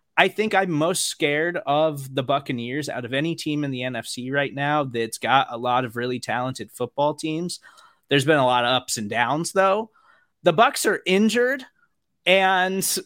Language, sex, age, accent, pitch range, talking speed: English, male, 30-49, American, 140-185 Hz, 185 wpm